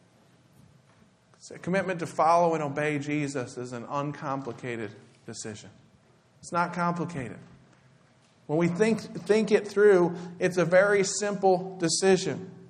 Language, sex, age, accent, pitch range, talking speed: English, male, 40-59, American, 130-165 Hz, 120 wpm